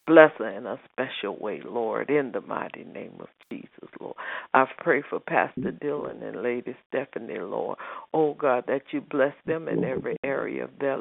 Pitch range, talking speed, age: 130-150 Hz, 185 wpm, 60-79